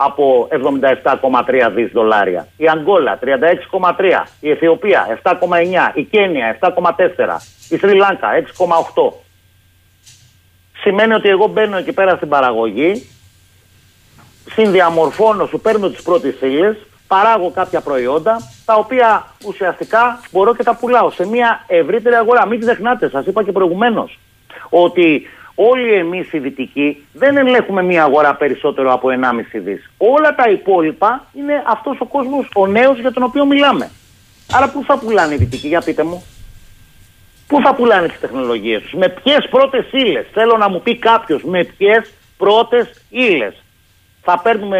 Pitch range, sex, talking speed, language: 155-235 Hz, male, 145 wpm, Greek